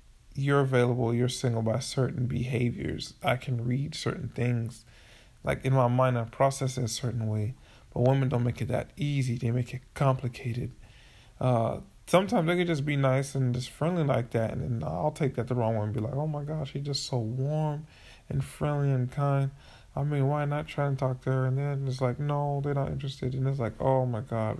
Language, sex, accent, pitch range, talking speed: English, male, American, 115-140 Hz, 220 wpm